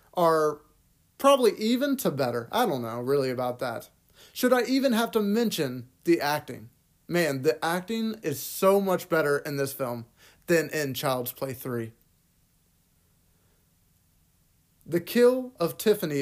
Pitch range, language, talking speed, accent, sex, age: 130-185 Hz, English, 140 wpm, American, male, 30-49